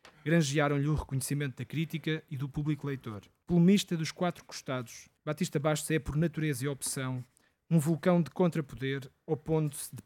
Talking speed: 155 wpm